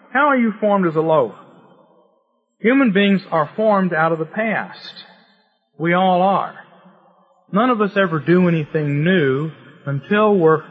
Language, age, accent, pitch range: English, 40-59, American, 160-205 Hz